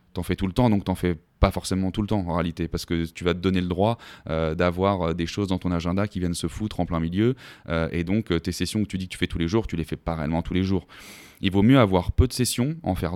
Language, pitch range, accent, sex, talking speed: French, 85-105 Hz, French, male, 315 wpm